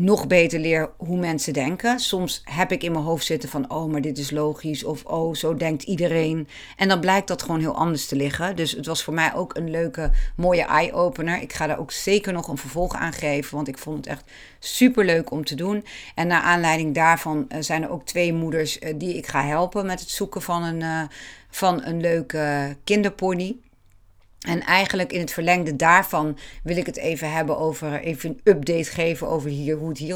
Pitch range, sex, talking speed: 150-180 Hz, female, 210 wpm